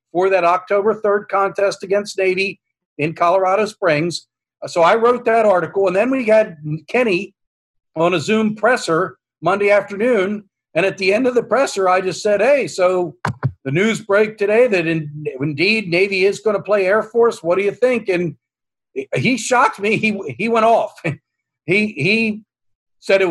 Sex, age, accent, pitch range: male, 50-69, American, 155-210 Hz